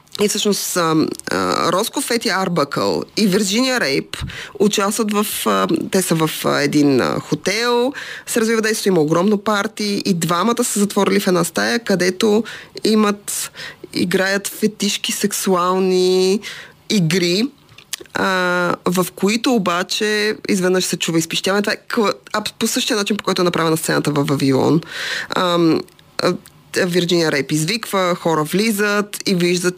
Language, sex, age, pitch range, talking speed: Bulgarian, female, 20-39, 165-210 Hz, 120 wpm